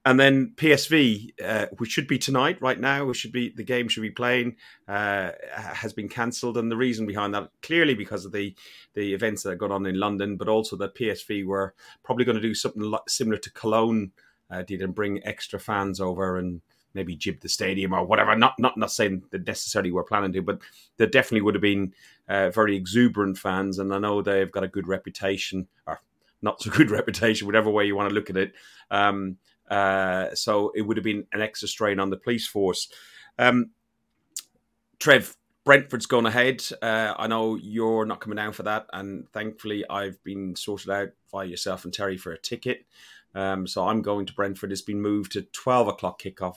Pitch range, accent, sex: 100-120 Hz, British, male